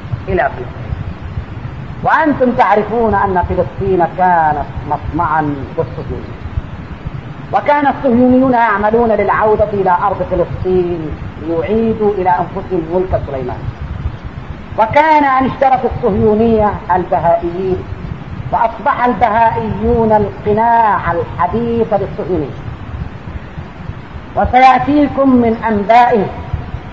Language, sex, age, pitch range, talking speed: Arabic, female, 40-59, 165-235 Hz, 75 wpm